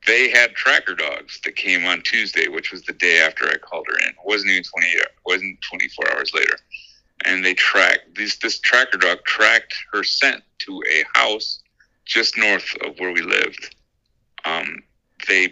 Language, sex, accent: English, male, American